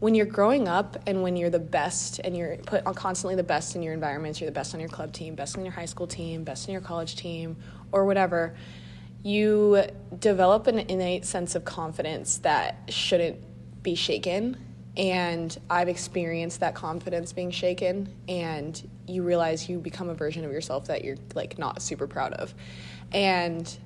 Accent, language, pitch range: American, English, 155-180 Hz